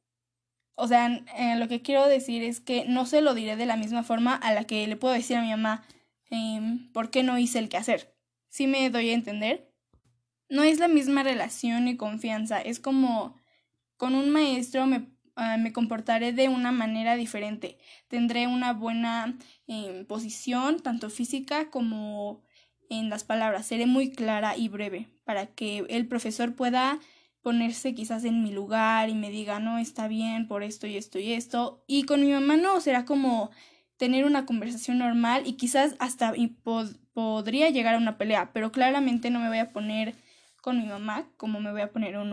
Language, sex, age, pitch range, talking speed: Spanish, female, 10-29, 220-260 Hz, 185 wpm